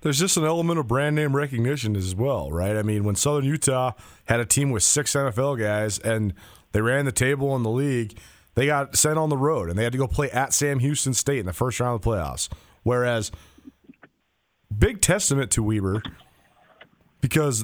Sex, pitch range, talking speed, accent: male, 110-140 Hz, 205 wpm, American